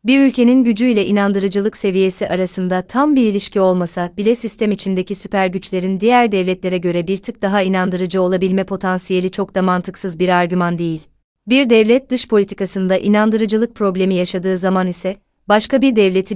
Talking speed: 160 wpm